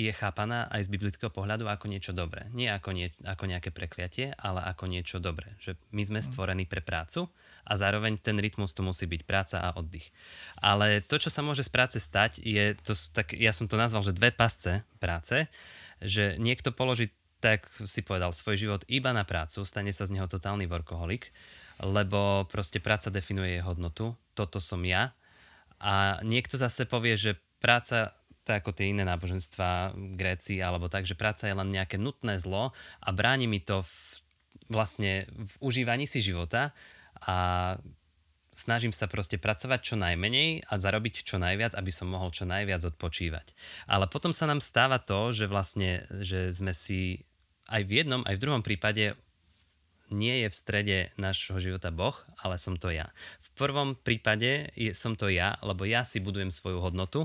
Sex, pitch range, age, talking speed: male, 95-110 Hz, 20-39, 175 wpm